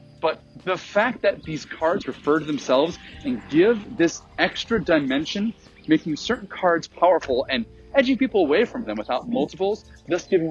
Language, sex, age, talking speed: English, male, 40-59, 160 wpm